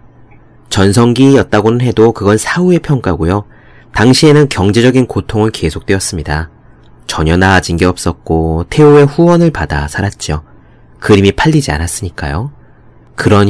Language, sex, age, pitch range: Korean, male, 30-49, 85-125 Hz